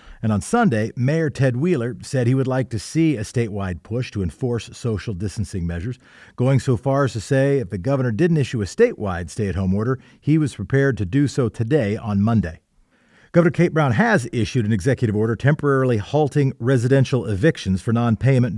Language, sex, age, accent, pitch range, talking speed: English, male, 40-59, American, 105-140 Hz, 185 wpm